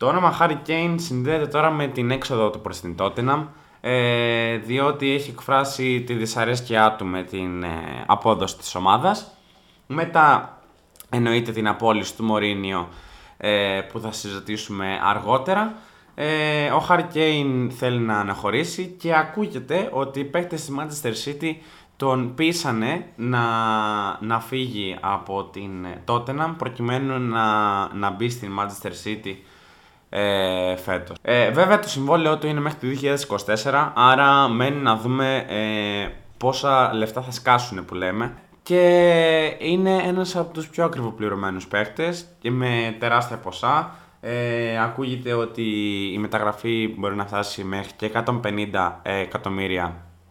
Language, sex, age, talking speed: Greek, male, 20-39, 125 wpm